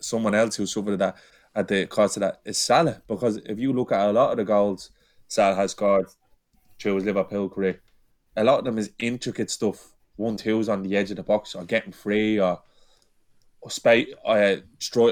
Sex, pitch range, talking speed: male, 100-115 Hz, 205 wpm